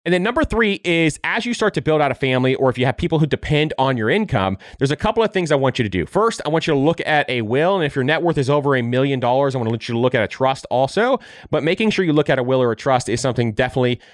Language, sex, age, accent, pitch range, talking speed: English, male, 30-49, American, 120-160 Hz, 325 wpm